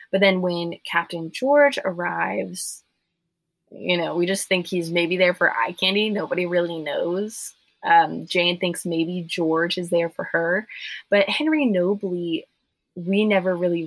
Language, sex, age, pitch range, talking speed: English, female, 20-39, 165-190 Hz, 150 wpm